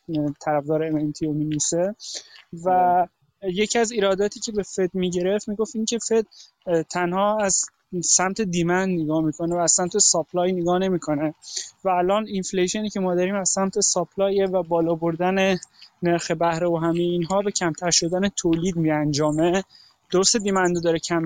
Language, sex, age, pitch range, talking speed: Persian, male, 20-39, 165-195 Hz, 160 wpm